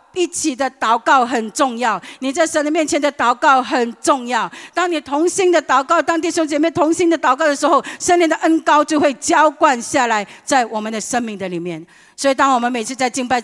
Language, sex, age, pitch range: Chinese, female, 50-69, 185-245 Hz